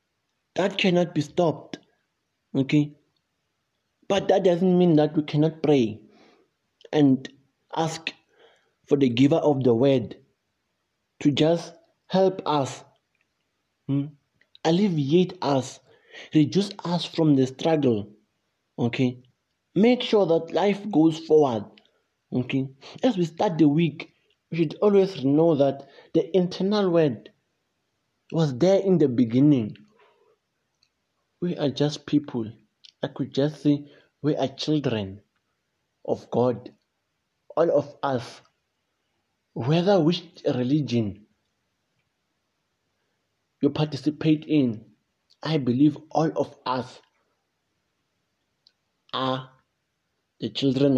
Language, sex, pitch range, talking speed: English, male, 130-165 Hz, 105 wpm